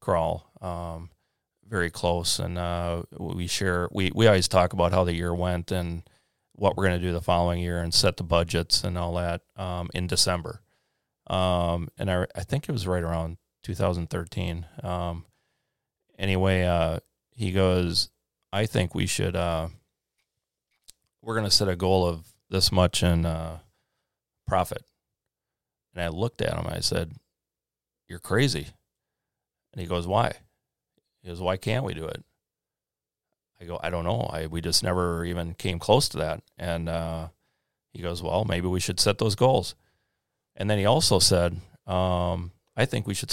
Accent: American